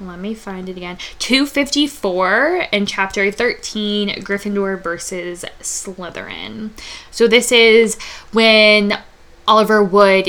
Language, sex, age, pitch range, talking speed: English, female, 10-29, 190-225 Hz, 105 wpm